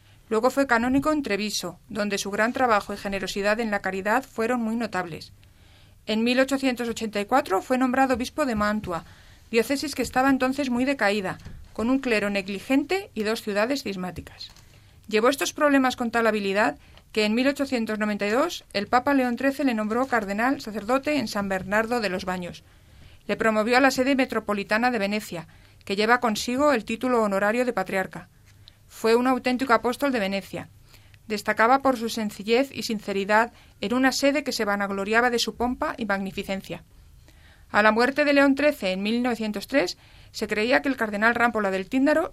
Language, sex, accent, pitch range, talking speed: Spanish, female, Spanish, 200-255 Hz, 165 wpm